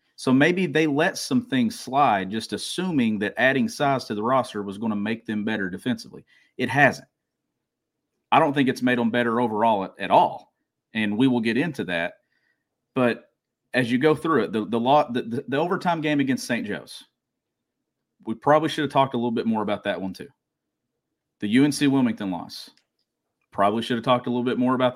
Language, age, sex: English, 40-59, male